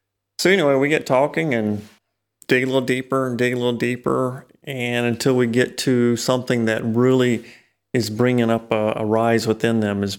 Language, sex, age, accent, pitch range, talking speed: English, male, 30-49, American, 110-125 Hz, 190 wpm